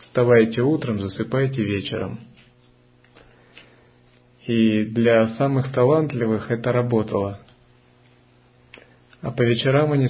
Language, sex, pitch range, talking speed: Russian, male, 115-135 Hz, 85 wpm